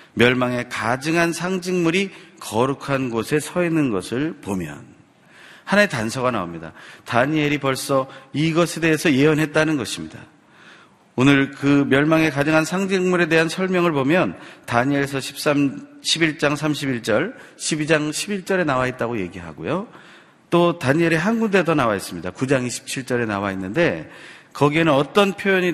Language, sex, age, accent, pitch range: Korean, male, 40-59, native, 125-165 Hz